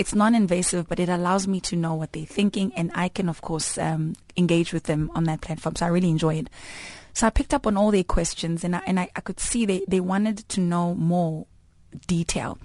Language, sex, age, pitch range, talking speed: English, female, 20-39, 160-190 Hz, 235 wpm